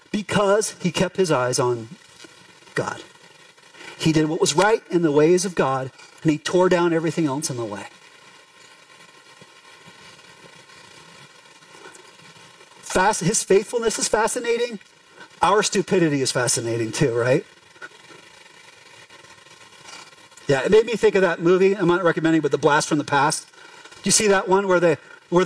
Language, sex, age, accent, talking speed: English, male, 40-59, American, 140 wpm